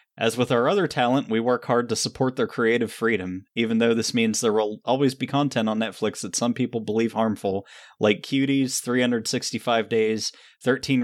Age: 20-39